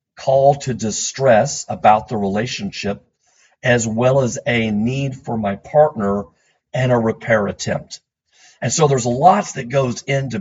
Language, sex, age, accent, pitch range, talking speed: English, male, 50-69, American, 105-140 Hz, 145 wpm